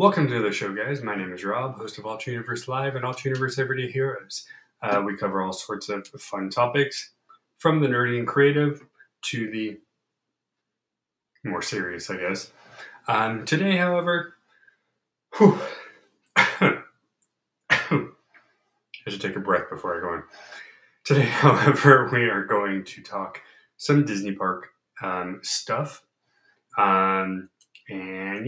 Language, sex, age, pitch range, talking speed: English, male, 20-39, 100-145 Hz, 135 wpm